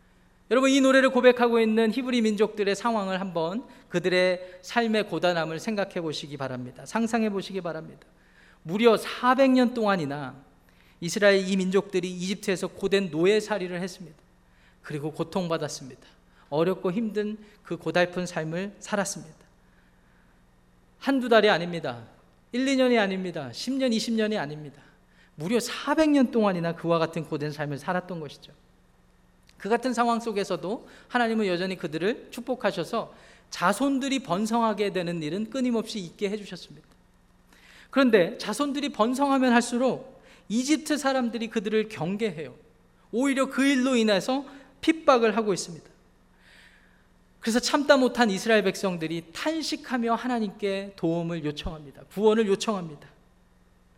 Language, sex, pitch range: Korean, male, 165-235 Hz